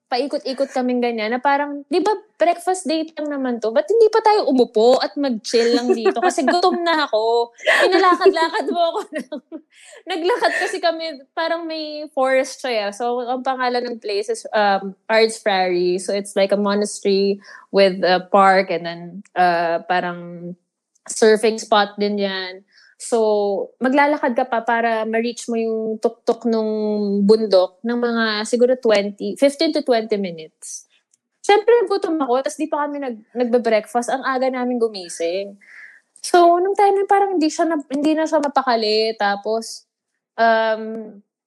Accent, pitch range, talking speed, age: Filipino, 215-290 Hz, 150 wpm, 20-39